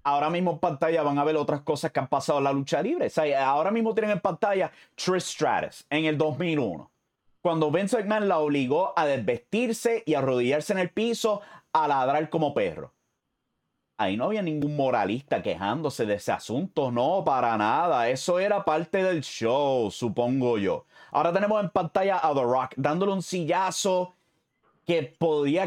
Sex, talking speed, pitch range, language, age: male, 180 wpm, 140-185 Hz, English, 30-49